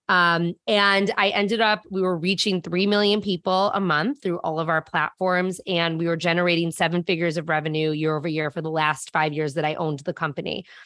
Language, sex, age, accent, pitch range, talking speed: English, female, 20-39, American, 160-185 Hz, 215 wpm